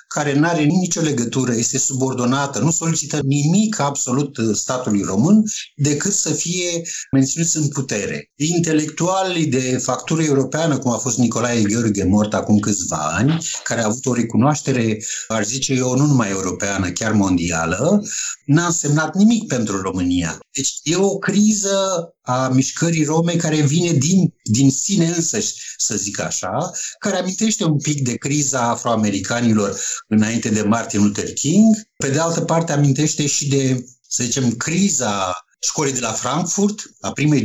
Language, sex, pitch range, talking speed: Romanian, male, 110-160 Hz, 150 wpm